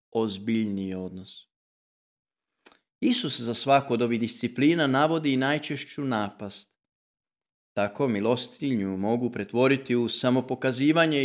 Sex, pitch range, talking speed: male, 105-150 Hz, 90 wpm